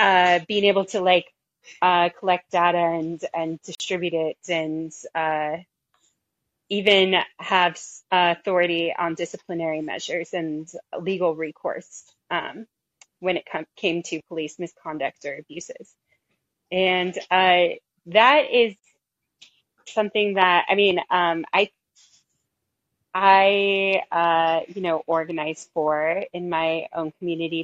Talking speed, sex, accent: 115 wpm, female, American